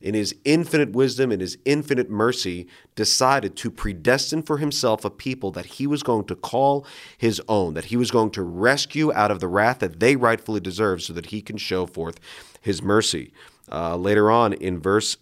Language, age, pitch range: English, 40-59, 90-125 Hz